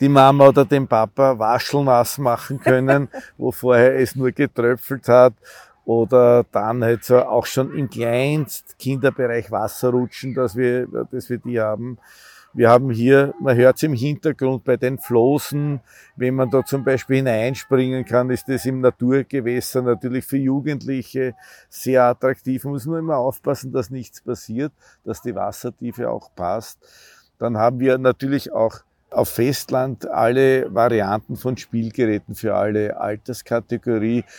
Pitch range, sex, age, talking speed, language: 115-135 Hz, male, 50-69, 145 wpm, German